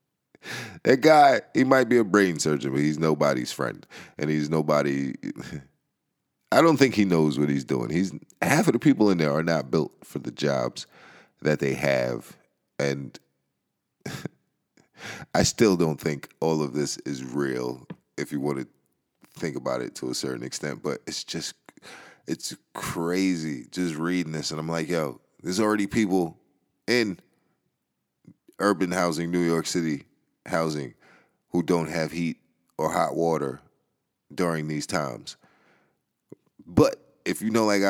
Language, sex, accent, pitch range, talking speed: English, male, American, 75-90 Hz, 155 wpm